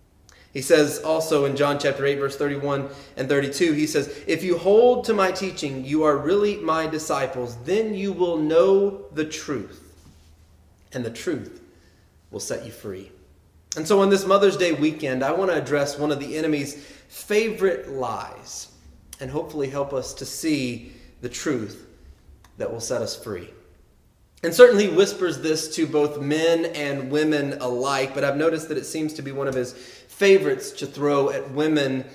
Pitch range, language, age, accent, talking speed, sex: 120-155 Hz, English, 30-49, American, 175 wpm, male